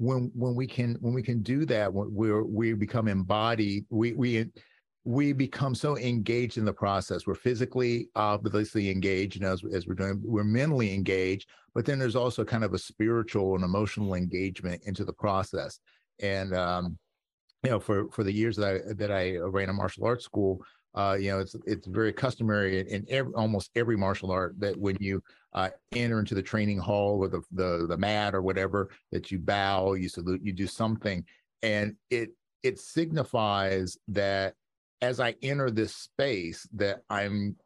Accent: American